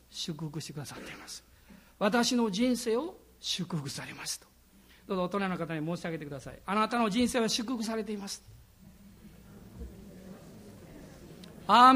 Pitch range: 225-285 Hz